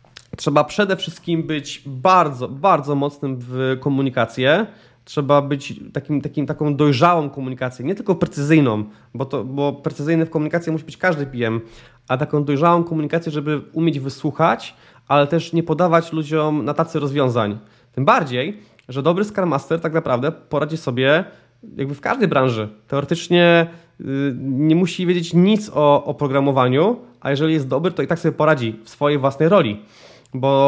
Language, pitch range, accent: Polish, 140-170 Hz, native